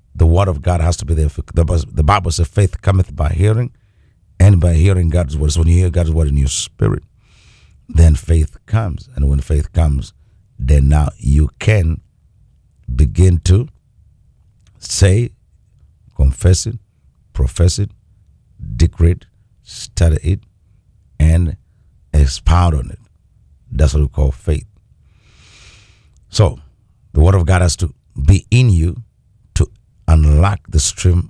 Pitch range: 75-100 Hz